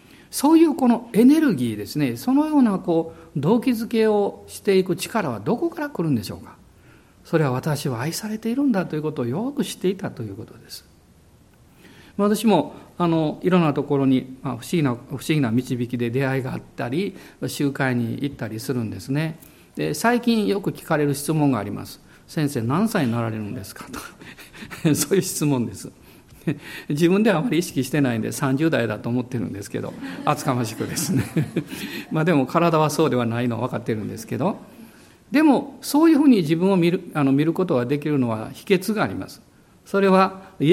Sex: male